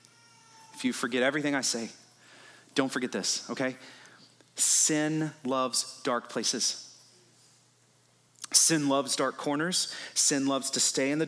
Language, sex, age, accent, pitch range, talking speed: English, male, 30-49, American, 135-215 Hz, 130 wpm